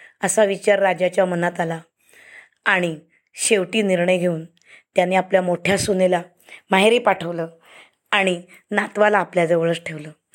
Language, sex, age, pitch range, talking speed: Marathi, female, 20-39, 175-200 Hz, 110 wpm